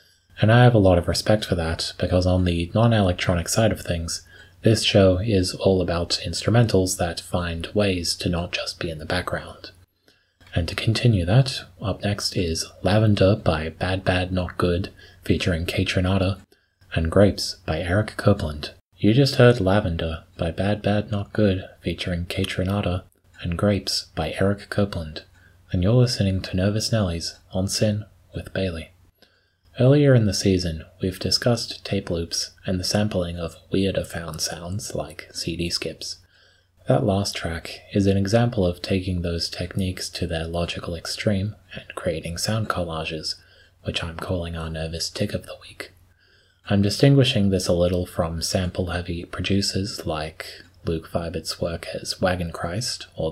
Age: 20-39